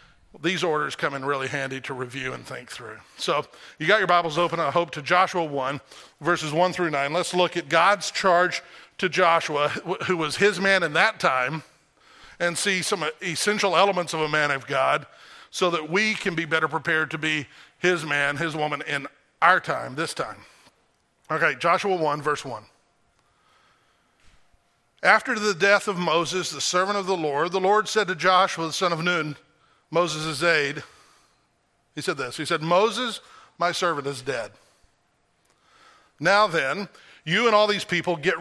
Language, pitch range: English, 155-195 Hz